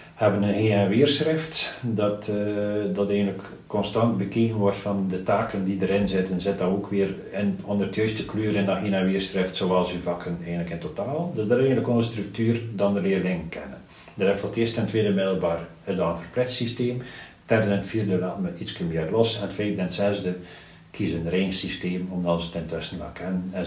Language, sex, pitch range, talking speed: Dutch, male, 90-115 Hz, 210 wpm